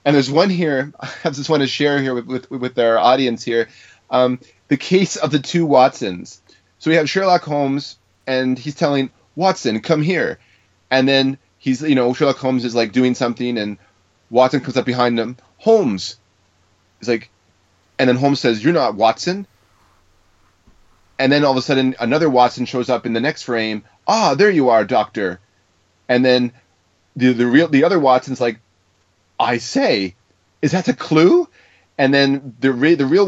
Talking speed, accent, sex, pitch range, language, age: 180 wpm, American, male, 115-145 Hz, English, 30-49